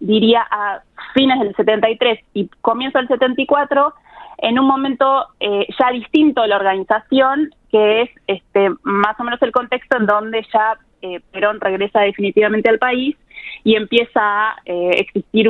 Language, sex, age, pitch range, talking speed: Spanish, female, 20-39, 200-235 Hz, 150 wpm